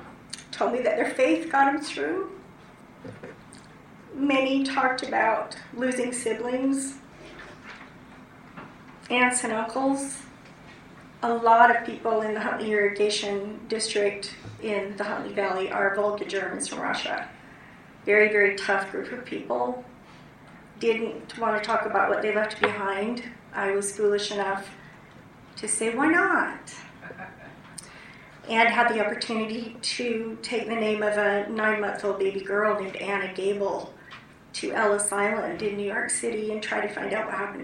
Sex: female